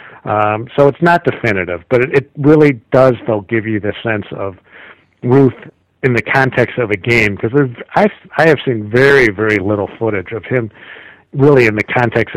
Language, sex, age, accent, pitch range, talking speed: English, male, 50-69, American, 110-145 Hz, 185 wpm